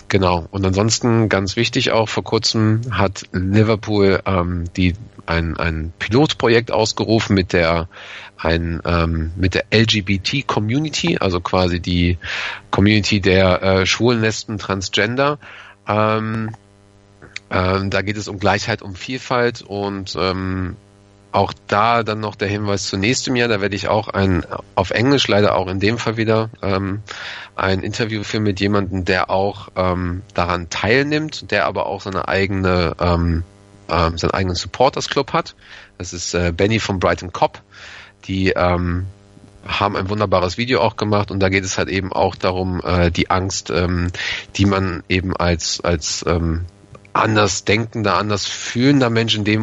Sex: male